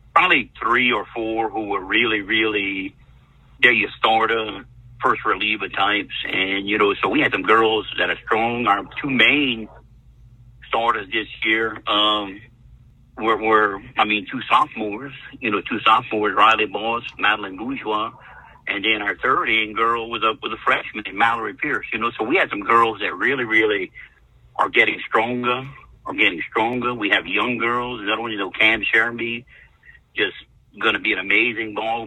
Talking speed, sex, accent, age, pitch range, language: 170 wpm, male, American, 50-69, 105-120 Hz, English